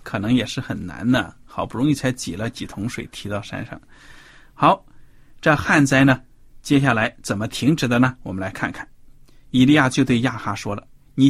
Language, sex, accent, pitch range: Chinese, male, native, 125-160 Hz